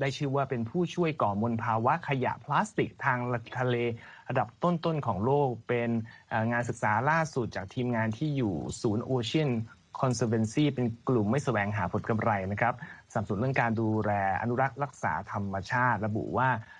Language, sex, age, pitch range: Thai, male, 20-39, 105-130 Hz